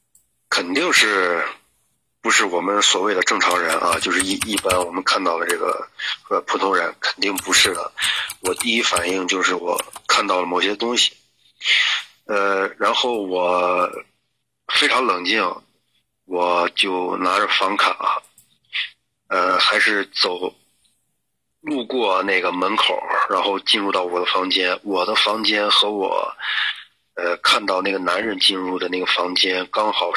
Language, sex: Chinese, male